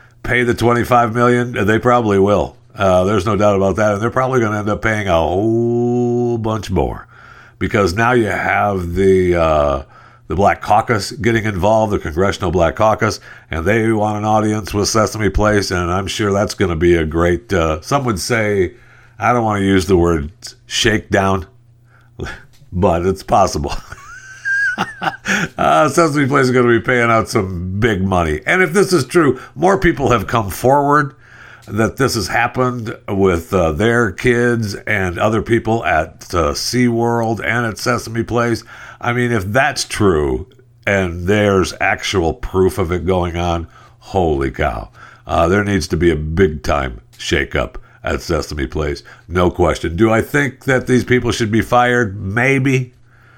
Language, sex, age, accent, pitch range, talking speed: English, male, 60-79, American, 95-120 Hz, 170 wpm